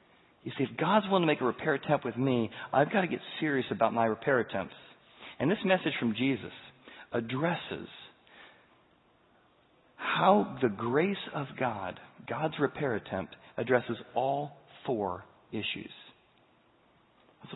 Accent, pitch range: American, 135-200 Hz